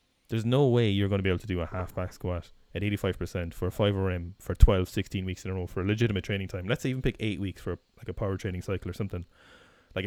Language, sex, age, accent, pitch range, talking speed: English, male, 20-39, Irish, 95-110 Hz, 270 wpm